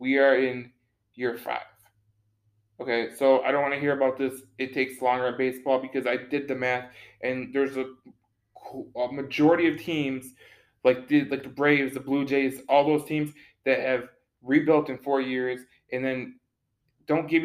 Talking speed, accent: 180 wpm, American